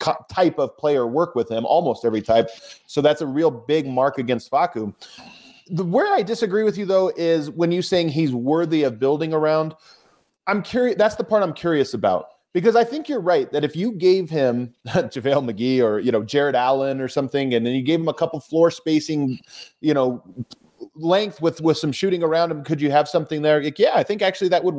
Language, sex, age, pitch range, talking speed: English, male, 30-49, 130-175 Hz, 220 wpm